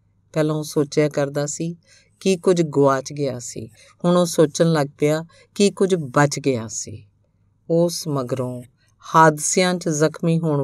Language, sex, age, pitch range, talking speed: Punjabi, female, 50-69, 130-170 Hz, 140 wpm